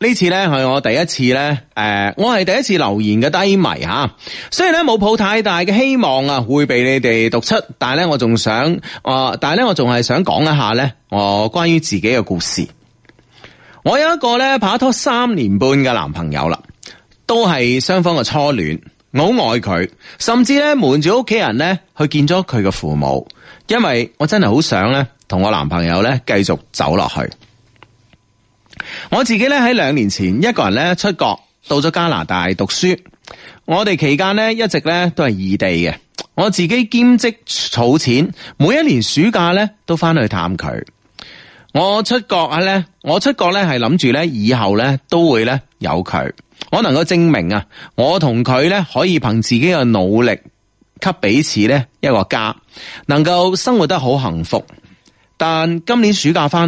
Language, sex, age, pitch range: Chinese, male, 30-49, 115-190 Hz